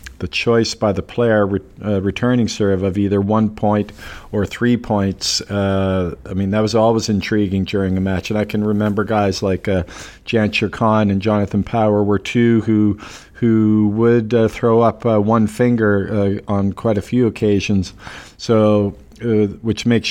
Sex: male